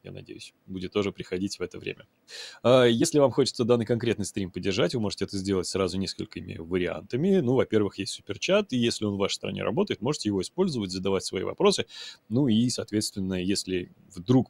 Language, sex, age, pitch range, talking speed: Russian, male, 20-39, 95-115 Hz, 180 wpm